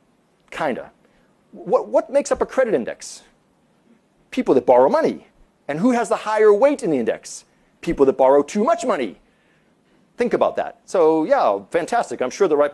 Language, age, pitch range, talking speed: English, 40-59, 135-210 Hz, 175 wpm